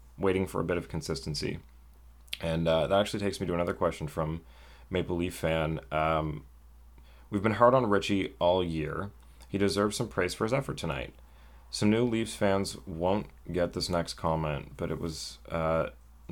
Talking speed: 175 wpm